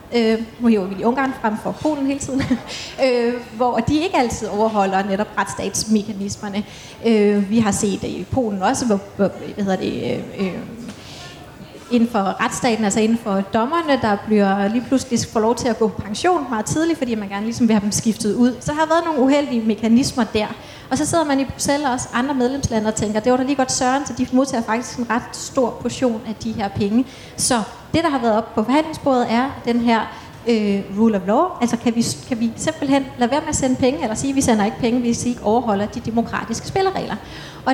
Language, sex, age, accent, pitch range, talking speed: Danish, female, 30-49, native, 220-265 Hz, 225 wpm